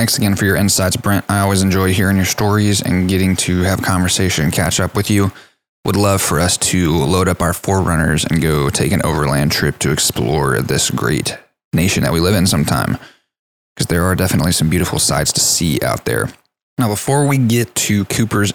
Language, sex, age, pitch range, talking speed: English, male, 20-39, 90-105 Hz, 210 wpm